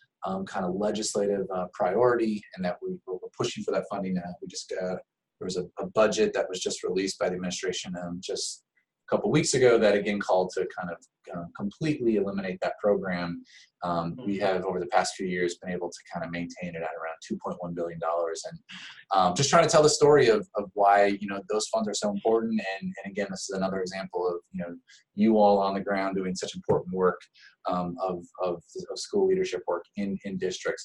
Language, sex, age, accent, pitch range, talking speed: English, male, 20-39, American, 95-125 Hz, 225 wpm